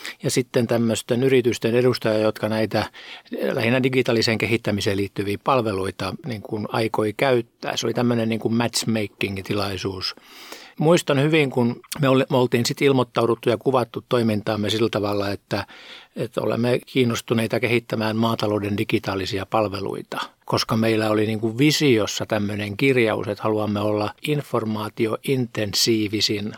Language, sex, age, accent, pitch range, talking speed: Finnish, male, 60-79, native, 105-130 Hz, 105 wpm